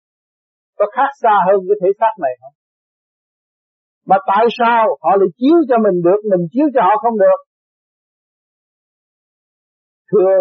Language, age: Vietnamese, 60-79